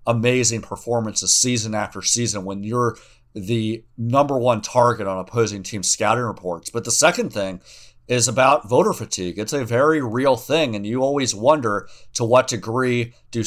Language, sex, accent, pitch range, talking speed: English, male, American, 100-125 Hz, 165 wpm